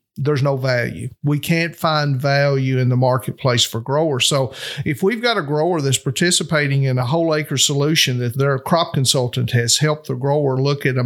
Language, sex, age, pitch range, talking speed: English, male, 50-69, 130-165 Hz, 195 wpm